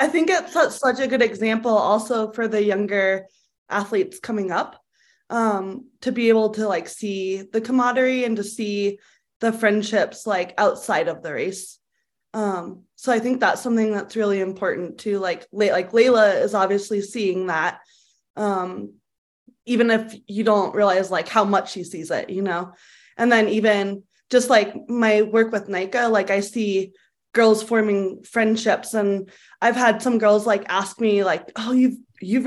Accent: American